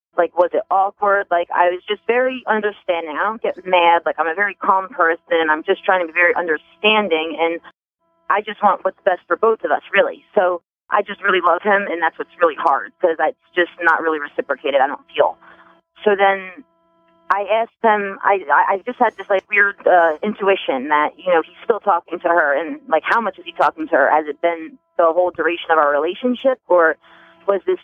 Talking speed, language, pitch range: 220 wpm, English, 165-210 Hz